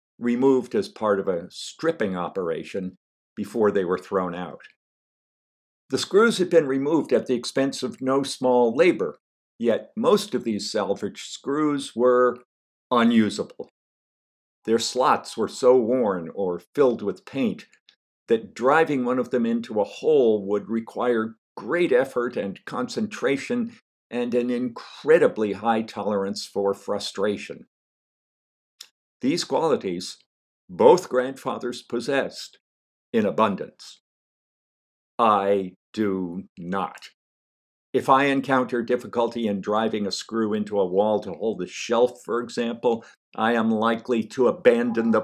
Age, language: 50-69, English